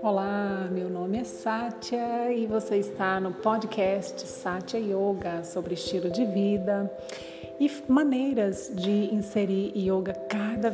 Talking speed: 125 wpm